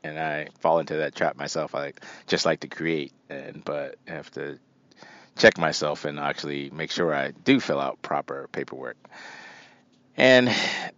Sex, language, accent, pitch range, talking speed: male, English, American, 100-120 Hz, 165 wpm